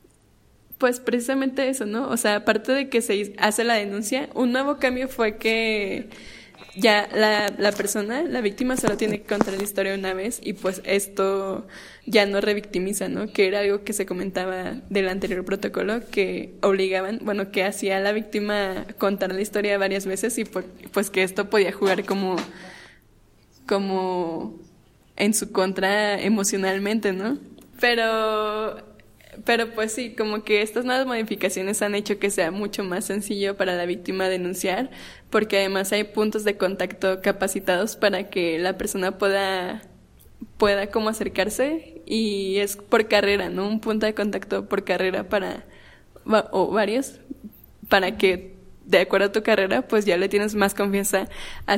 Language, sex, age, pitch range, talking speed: Spanish, female, 10-29, 195-220 Hz, 160 wpm